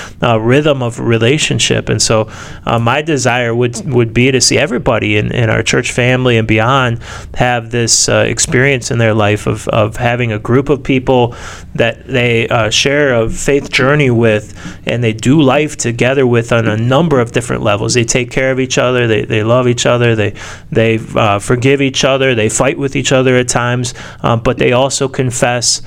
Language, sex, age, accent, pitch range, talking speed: English, male, 30-49, American, 110-130 Hz, 195 wpm